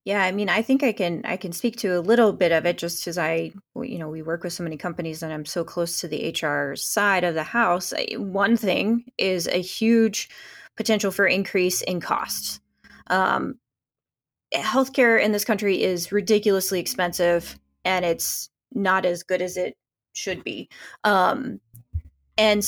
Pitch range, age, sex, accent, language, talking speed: 175-205 Hz, 20-39, female, American, English, 175 wpm